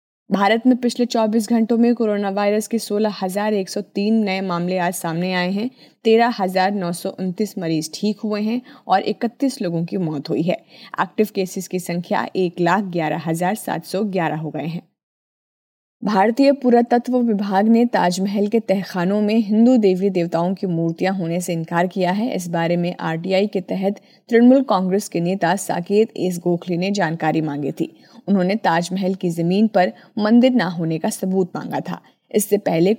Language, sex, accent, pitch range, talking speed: Hindi, female, native, 175-215 Hz, 155 wpm